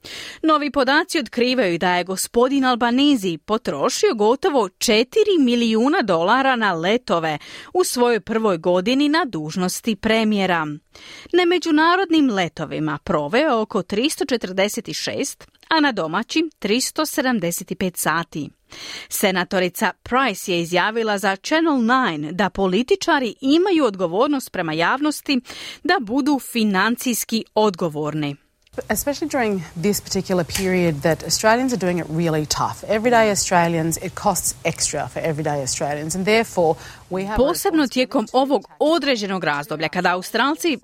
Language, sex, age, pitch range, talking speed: Croatian, female, 30-49, 180-270 Hz, 115 wpm